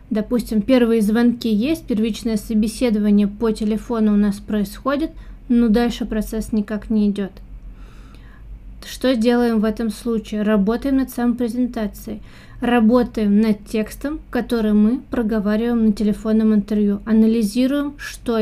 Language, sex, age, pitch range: Russian, female, 20-39, 210-240 Hz